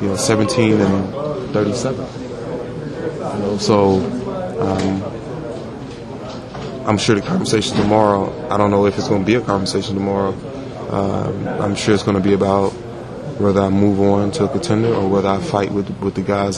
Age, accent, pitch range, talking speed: 20-39, American, 95-105 Hz, 175 wpm